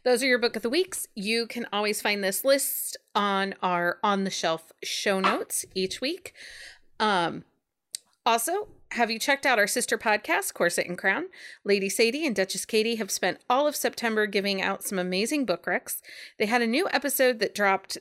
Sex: female